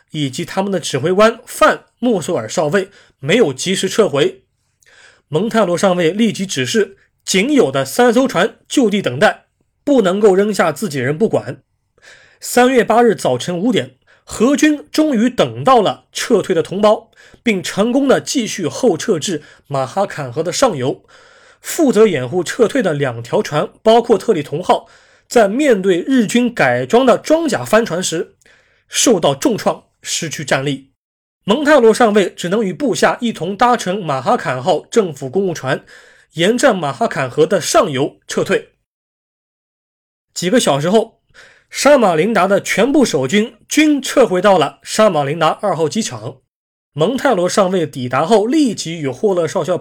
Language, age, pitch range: Chinese, 20-39, 165-240 Hz